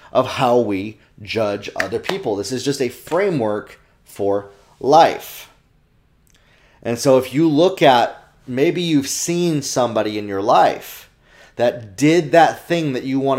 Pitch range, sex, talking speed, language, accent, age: 120-150 Hz, male, 150 wpm, English, American, 30-49